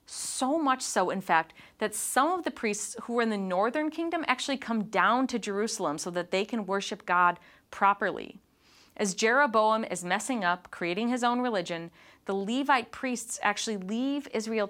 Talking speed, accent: 175 wpm, American